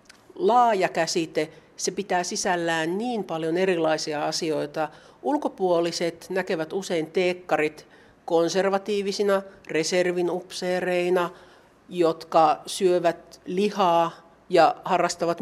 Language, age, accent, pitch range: Finnish, 60-79, native, 160-185 Hz